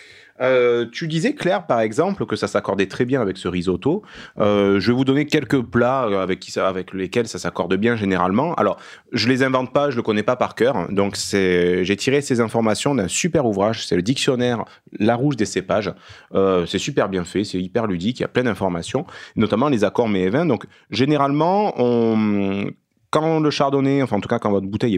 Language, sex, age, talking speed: French, male, 30-49, 210 wpm